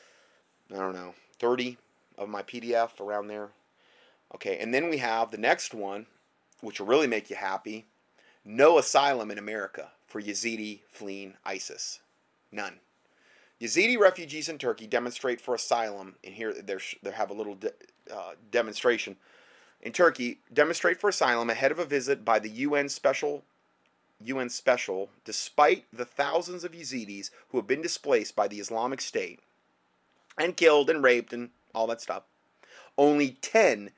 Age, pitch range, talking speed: 30-49, 110-155 Hz, 150 wpm